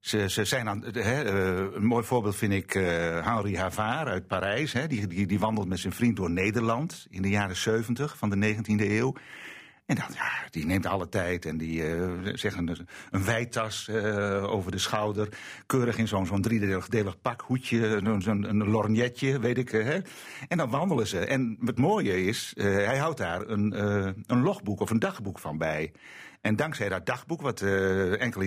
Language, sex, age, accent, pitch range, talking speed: Dutch, male, 50-69, Dutch, 95-120 Hz, 190 wpm